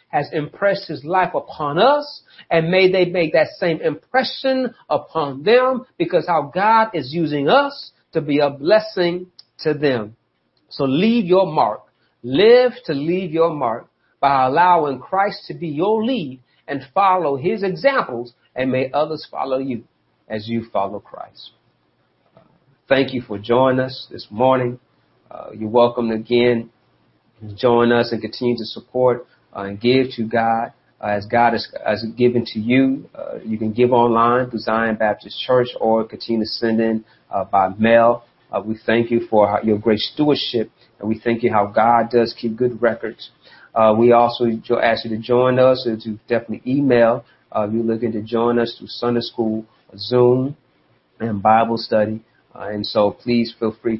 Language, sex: English, male